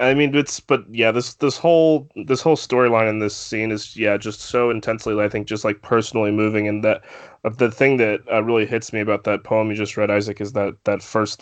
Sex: male